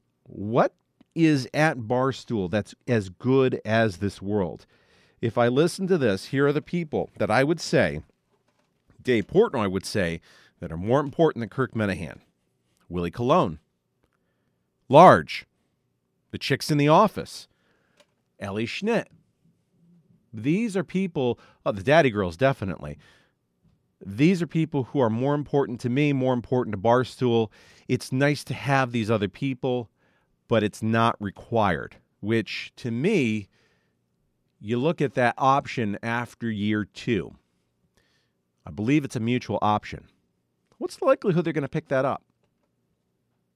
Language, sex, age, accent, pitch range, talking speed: English, male, 40-59, American, 105-145 Hz, 140 wpm